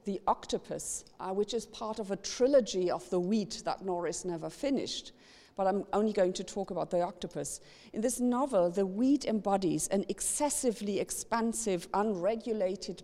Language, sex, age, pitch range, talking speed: English, female, 50-69, 165-210 Hz, 160 wpm